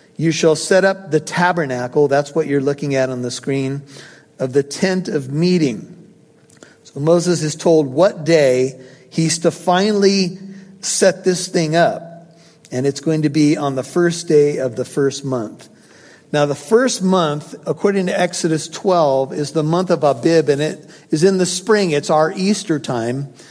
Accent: American